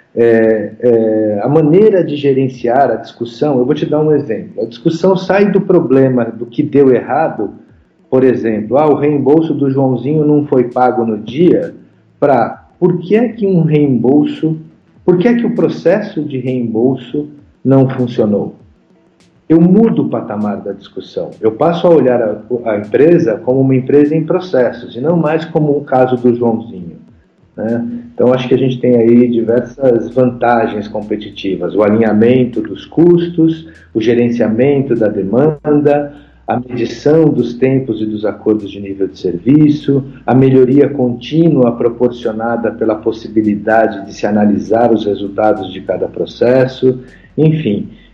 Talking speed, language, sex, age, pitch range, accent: 155 wpm, Portuguese, male, 50-69, 115-150 Hz, Brazilian